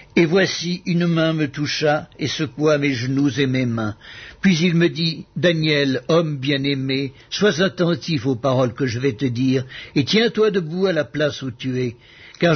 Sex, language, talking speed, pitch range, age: male, French, 185 wpm, 135-170 Hz, 60-79